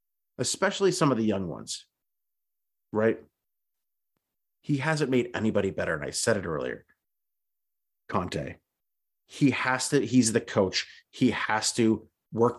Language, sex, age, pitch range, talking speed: English, male, 30-49, 105-130 Hz, 135 wpm